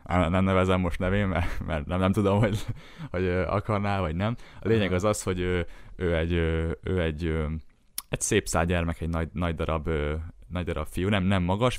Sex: male